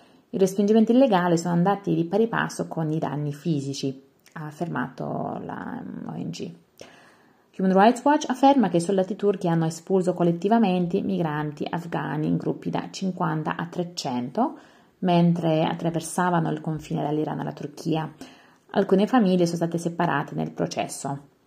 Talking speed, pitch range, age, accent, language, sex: 140 wpm, 155-195 Hz, 30-49, native, Italian, female